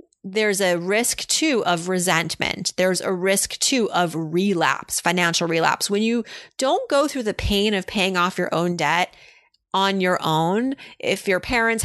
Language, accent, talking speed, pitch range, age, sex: English, American, 165 wpm, 170-215 Hz, 30-49, female